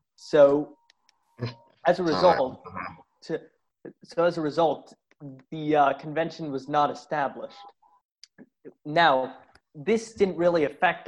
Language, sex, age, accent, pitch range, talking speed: English, male, 20-39, American, 135-160 Hz, 110 wpm